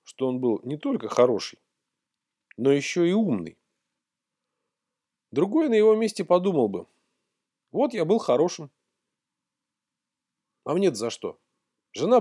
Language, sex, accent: Russian, male, native